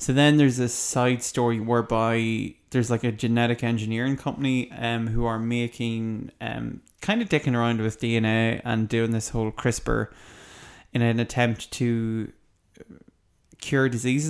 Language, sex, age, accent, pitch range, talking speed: English, male, 20-39, Irish, 115-125 Hz, 145 wpm